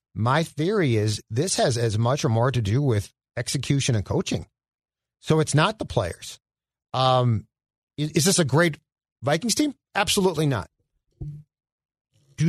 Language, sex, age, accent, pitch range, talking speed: English, male, 50-69, American, 125-175 Hz, 150 wpm